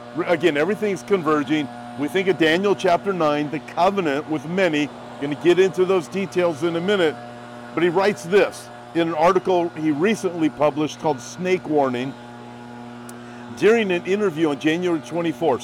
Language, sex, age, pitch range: English, male, 50-69, 130-170 Hz